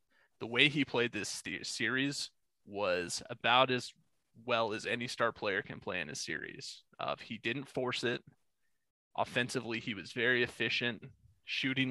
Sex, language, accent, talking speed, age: male, English, American, 150 wpm, 20-39